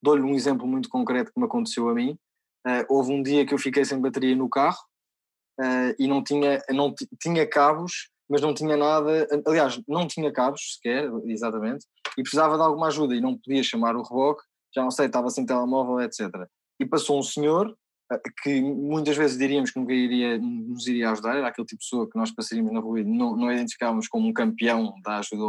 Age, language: 20-39, Portuguese